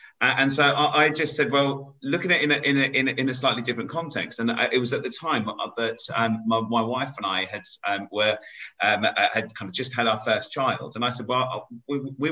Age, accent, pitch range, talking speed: 30-49, British, 125-150 Hz, 240 wpm